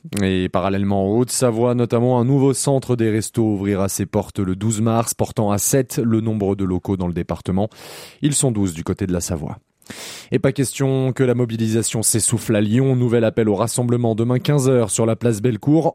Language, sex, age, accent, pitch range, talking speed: French, male, 20-39, French, 105-130 Hz, 200 wpm